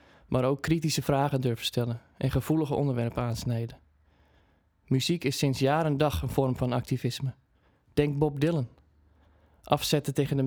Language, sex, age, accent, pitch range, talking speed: Dutch, male, 20-39, Dutch, 115-145 Hz, 150 wpm